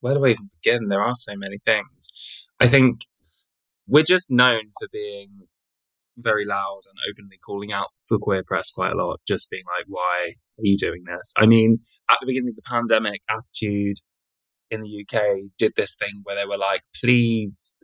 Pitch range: 100-125 Hz